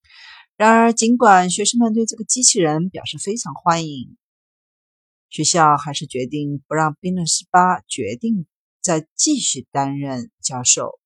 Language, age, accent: Chinese, 50-69, native